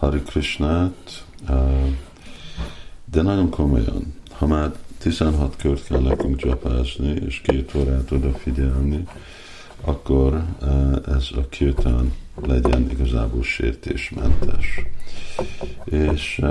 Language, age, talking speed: Hungarian, 50-69, 80 wpm